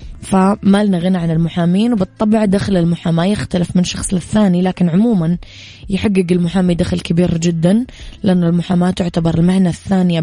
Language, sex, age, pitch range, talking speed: Arabic, female, 20-39, 165-200 Hz, 140 wpm